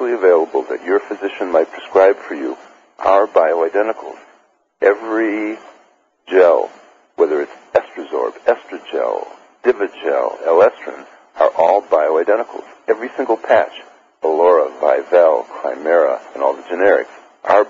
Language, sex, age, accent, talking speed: English, male, 60-79, American, 110 wpm